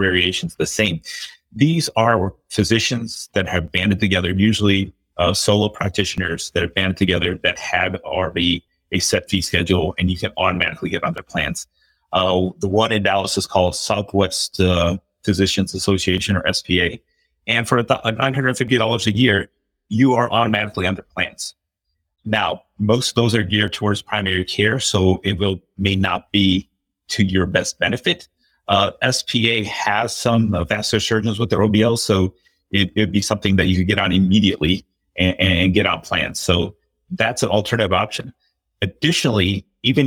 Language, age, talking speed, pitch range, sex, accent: English, 30-49, 160 wpm, 90-110 Hz, male, American